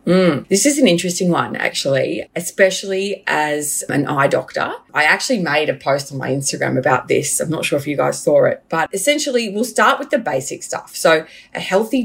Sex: female